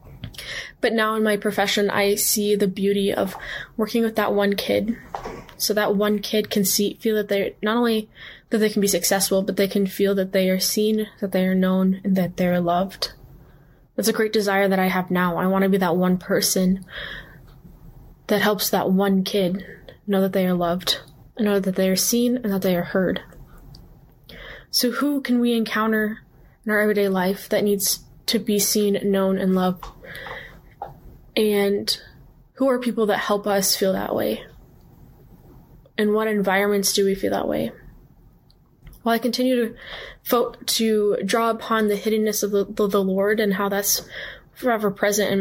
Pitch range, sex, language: 195-215 Hz, female, English